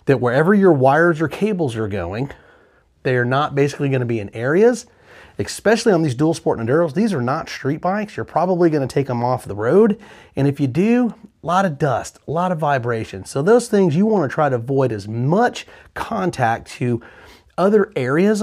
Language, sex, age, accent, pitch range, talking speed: English, male, 30-49, American, 120-170 Hz, 210 wpm